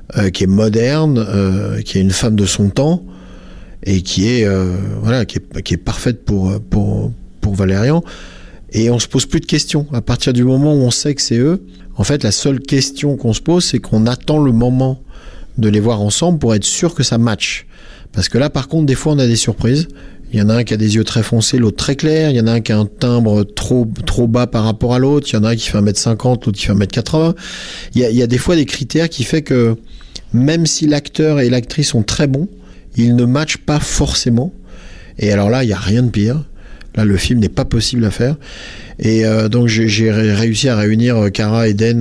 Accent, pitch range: French, 105-130 Hz